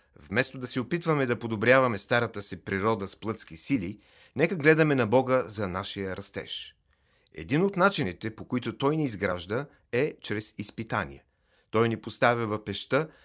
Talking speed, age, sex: 160 wpm, 40-59, male